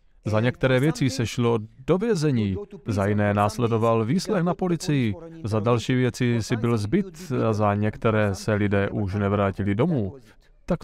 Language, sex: Slovak, male